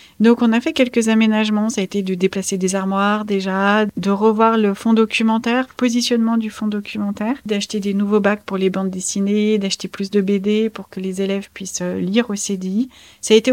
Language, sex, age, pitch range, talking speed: French, female, 40-59, 200-230 Hz, 205 wpm